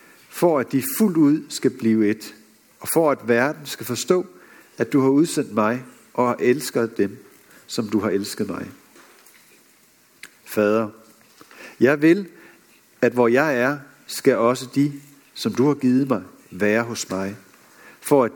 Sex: male